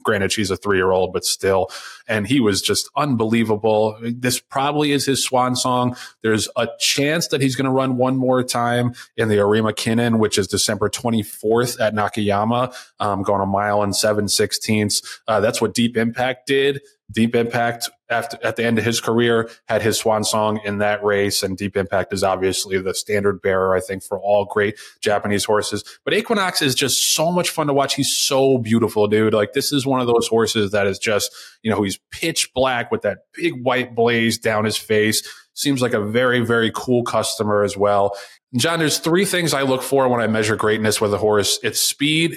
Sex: male